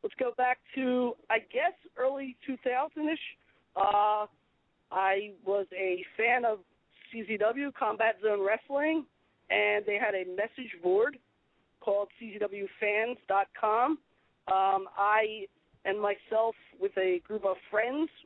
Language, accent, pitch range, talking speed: English, American, 195-245 Hz, 110 wpm